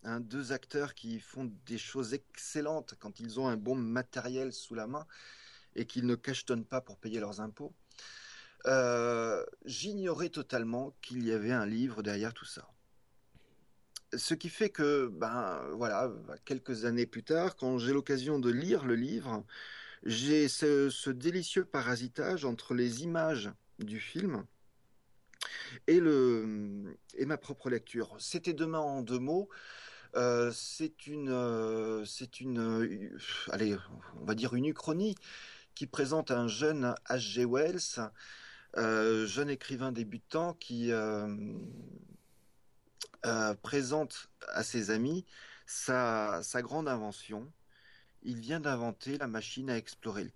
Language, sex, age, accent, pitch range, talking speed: French, male, 40-59, French, 115-145 Hz, 140 wpm